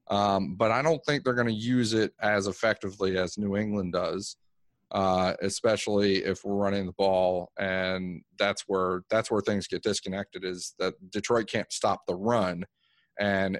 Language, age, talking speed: English, 30-49, 170 wpm